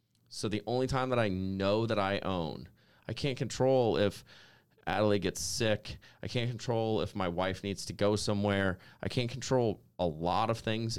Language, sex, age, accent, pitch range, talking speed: English, male, 30-49, American, 90-115 Hz, 185 wpm